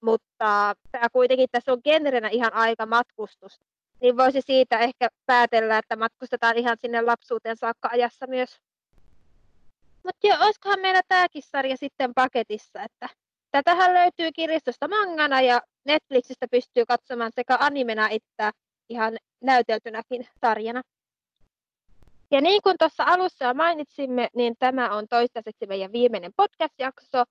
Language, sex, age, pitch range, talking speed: Finnish, female, 20-39, 225-270 Hz, 125 wpm